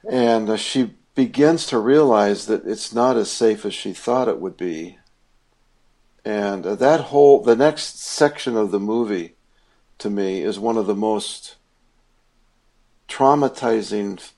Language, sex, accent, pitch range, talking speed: English, male, American, 105-125 Hz, 140 wpm